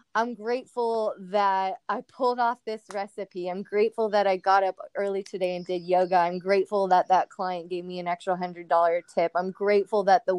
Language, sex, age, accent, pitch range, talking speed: English, female, 20-39, American, 180-225 Hz, 195 wpm